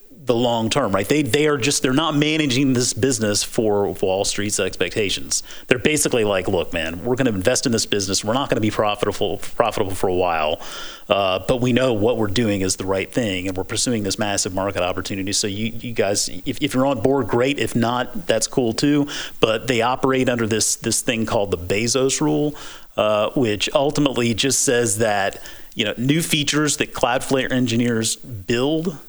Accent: American